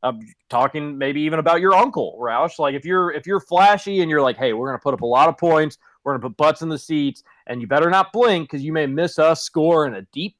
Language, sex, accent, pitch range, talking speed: English, male, American, 140-165 Hz, 275 wpm